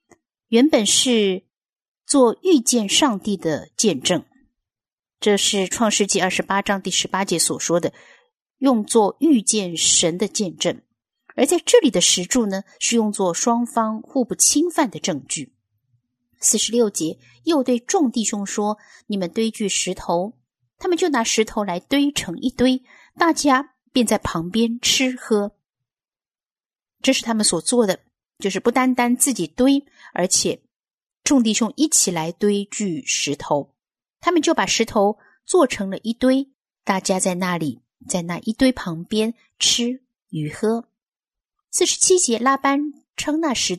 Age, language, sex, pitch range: 50-69, Chinese, female, 190-270 Hz